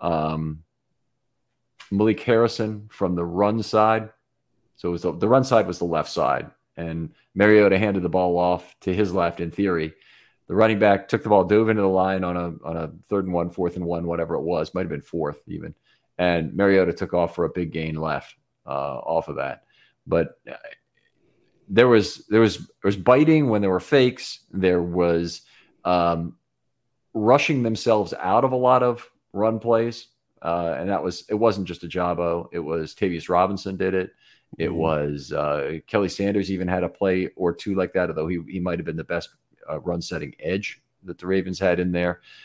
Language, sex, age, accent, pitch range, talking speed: English, male, 40-59, American, 85-110 Hz, 200 wpm